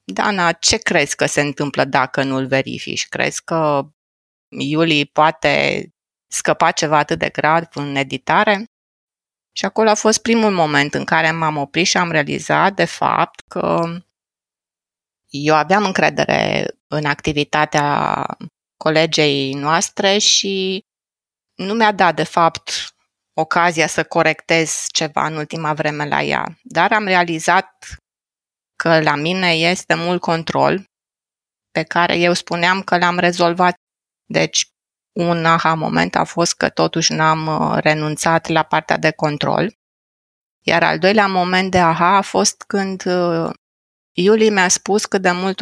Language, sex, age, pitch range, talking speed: Romanian, female, 20-39, 140-180 Hz, 135 wpm